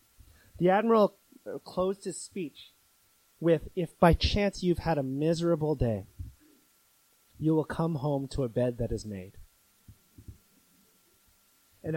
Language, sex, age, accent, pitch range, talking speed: English, male, 30-49, American, 120-165 Hz, 125 wpm